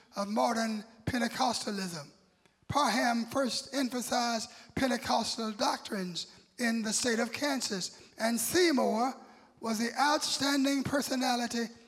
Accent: American